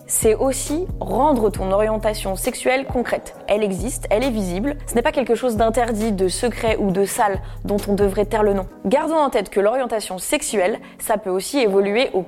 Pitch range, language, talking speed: 200-260 Hz, French, 195 wpm